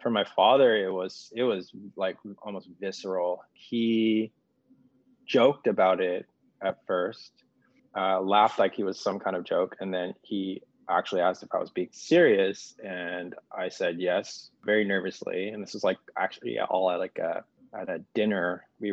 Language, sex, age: English, male, 20-39